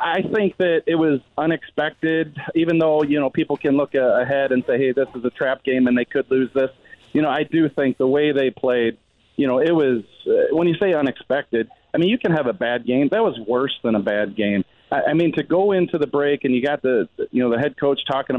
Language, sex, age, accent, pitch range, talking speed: English, male, 40-59, American, 125-155 Hz, 255 wpm